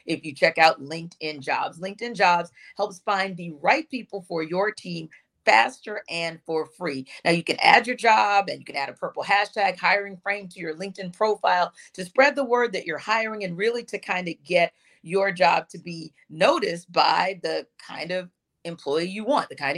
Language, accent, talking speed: English, American, 200 wpm